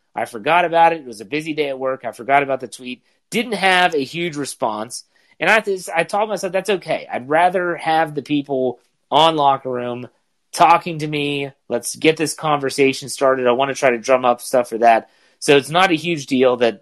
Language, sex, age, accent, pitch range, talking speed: English, male, 30-49, American, 120-155 Hz, 220 wpm